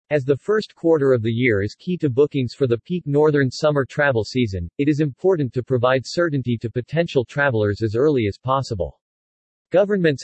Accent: American